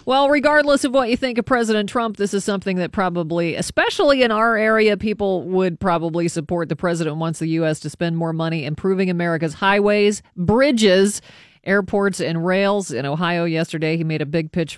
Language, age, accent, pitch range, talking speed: English, 40-59, American, 160-200 Hz, 185 wpm